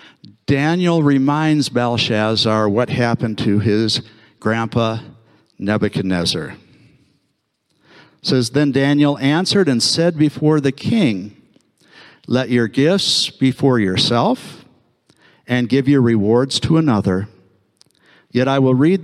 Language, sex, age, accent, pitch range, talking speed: English, male, 60-79, American, 110-145 Hz, 110 wpm